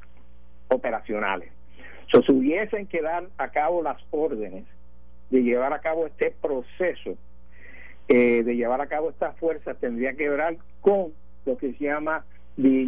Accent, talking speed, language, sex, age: American, 150 wpm, Spanish, male, 60-79